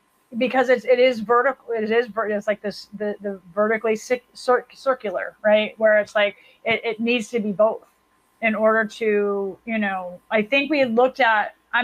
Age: 30-49